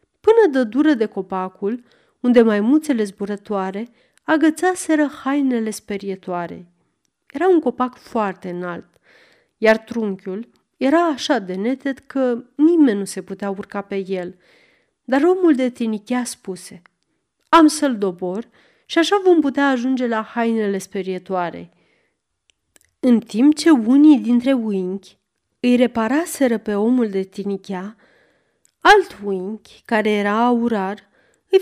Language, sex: Romanian, female